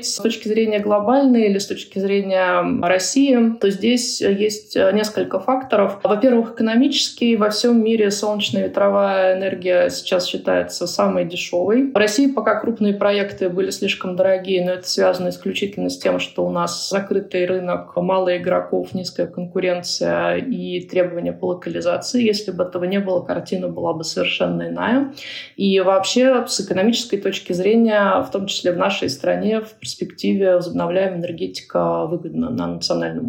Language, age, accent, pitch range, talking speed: Russian, 20-39, native, 180-220 Hz, 145 wpm